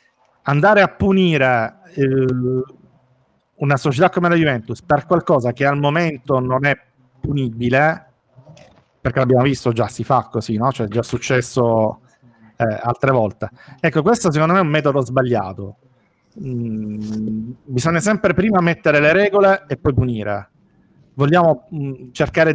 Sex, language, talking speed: male, Italian, 140 wpm